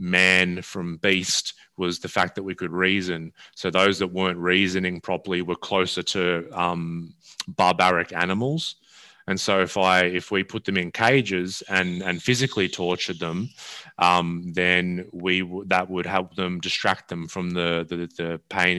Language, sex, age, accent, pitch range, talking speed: English, male, 20-39, Australian, 90-100 Hz, 165 wpm